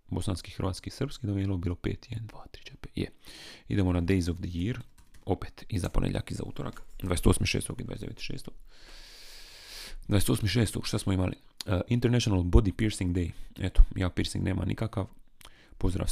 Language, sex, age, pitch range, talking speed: Croatian, male, 30-49, 90-110 Hz, 135 wpm